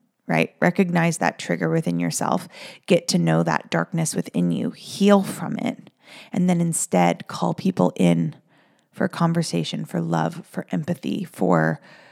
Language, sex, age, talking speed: English, female, 30-49, 145 wpm